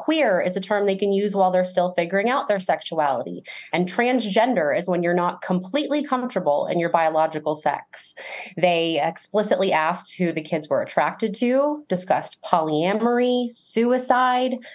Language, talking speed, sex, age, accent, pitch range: English, 155 wpm, female, 20-39, American, 175-225 Hz